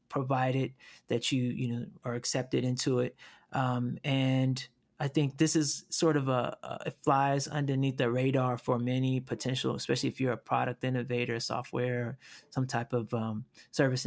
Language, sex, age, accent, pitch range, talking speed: English, male, 30-49, American, 125-135 Hz, 165 wpm